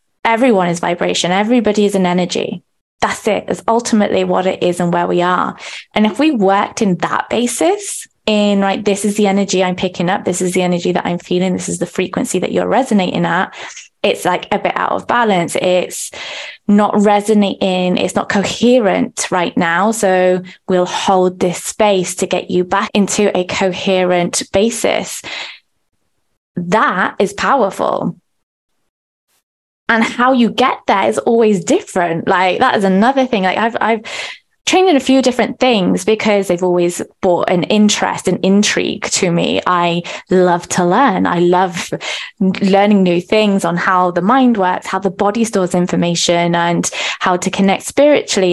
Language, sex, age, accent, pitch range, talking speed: English, female, 20-39, British, 180-225 Hz, 170 wpm